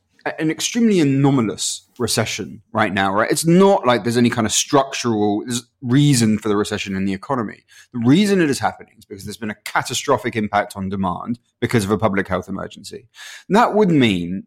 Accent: British